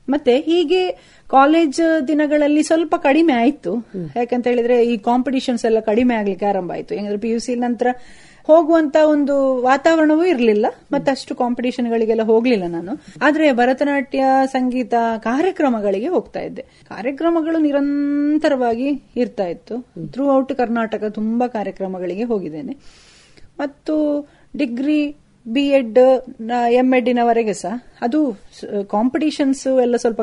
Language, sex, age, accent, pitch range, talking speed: Kannada, female, 30-49, native, 230-285 Hz, 105 wpm